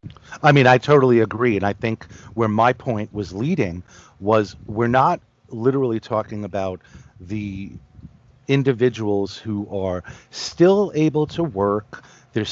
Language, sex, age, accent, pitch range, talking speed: English, male, 40-59, American, 105-125 Hz, 135 wpm